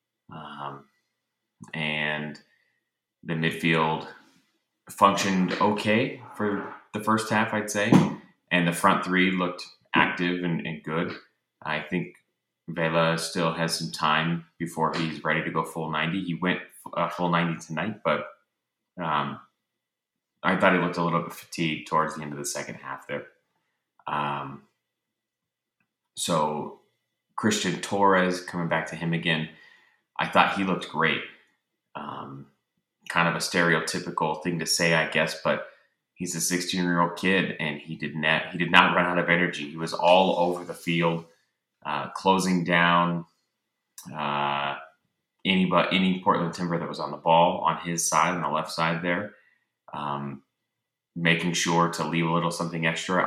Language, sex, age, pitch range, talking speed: English, male, 30-49, 80-90 Hz, 150 wpm